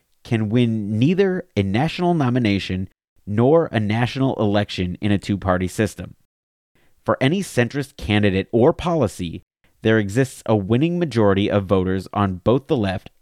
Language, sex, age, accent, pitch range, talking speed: English, male, 30-49, American, 100-135 Hz, 140 wpm